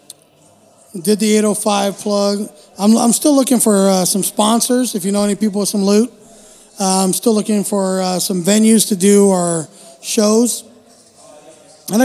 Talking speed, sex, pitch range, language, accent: 165 wpm, male, 195-215 Hz, English, American